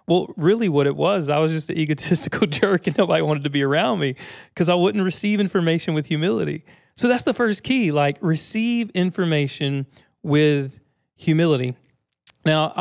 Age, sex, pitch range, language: 40-59, male, 140-170 Hz, English